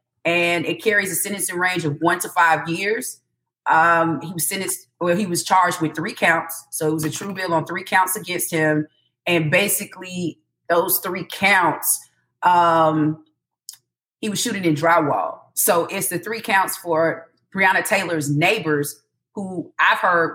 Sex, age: female, 30-49